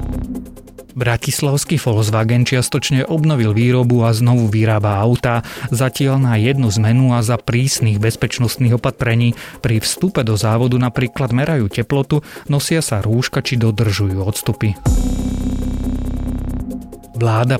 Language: Slovak